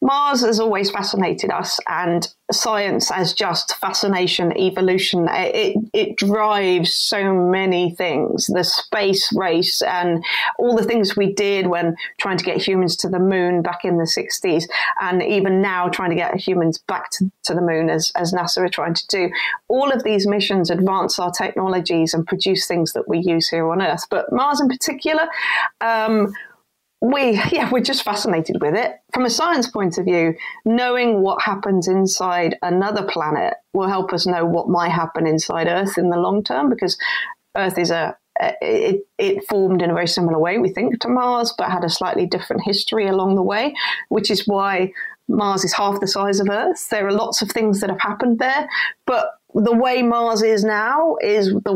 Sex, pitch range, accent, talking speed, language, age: female, 180-230 Hz, British, 190 wpm, English, 30-49